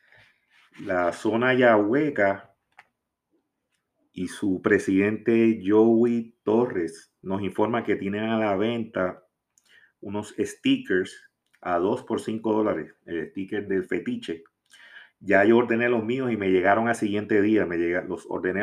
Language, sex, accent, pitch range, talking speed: Spanish, male, Venezuelan, 95-115 Hz, 135 wpm